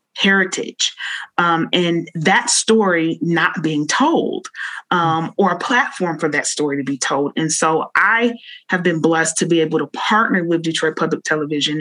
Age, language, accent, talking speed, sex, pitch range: 30-49, English, American, 170 wpm, female, 160-180 Hz